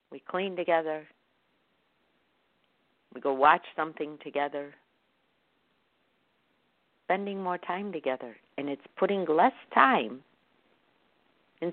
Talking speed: 90 wpm